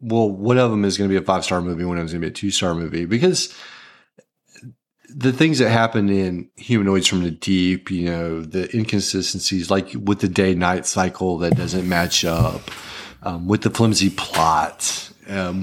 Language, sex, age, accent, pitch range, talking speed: English, male, 40-59, American, 95-120 Hz, 190 wpm